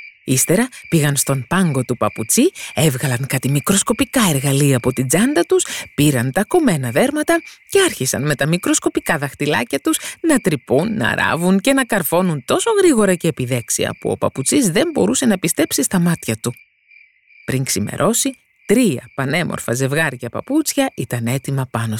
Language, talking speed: Greek, 150 wpm